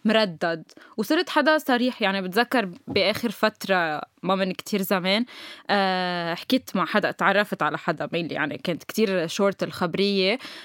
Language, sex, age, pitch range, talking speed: Arabic, female, 10-29, 190-245 Hz, 145 wpm